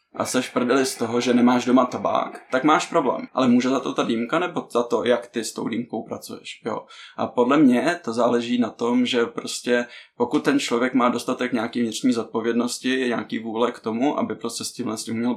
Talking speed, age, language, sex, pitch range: 220 wpm, 20-39, Czech, male, 115-125 Hz